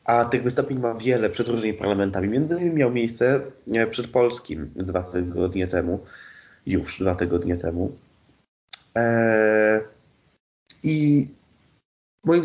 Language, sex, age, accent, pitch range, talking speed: Polish, male, 20-39, native, 110-130 Hz, 115 wpm